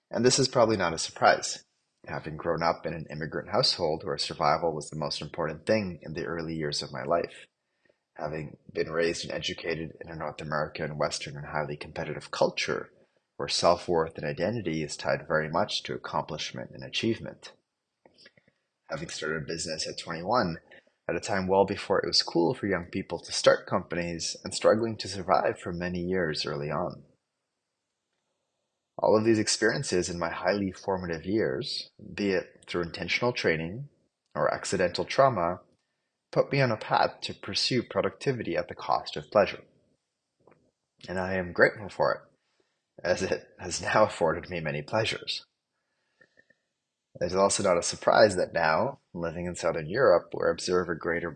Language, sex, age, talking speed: English, male, 30-49, 165 wpm